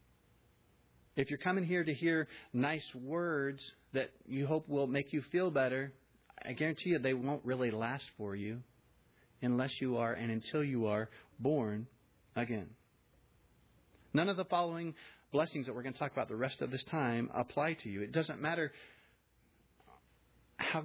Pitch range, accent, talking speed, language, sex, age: 115-145 Hz, American, 165 wpm, English, male, 40-59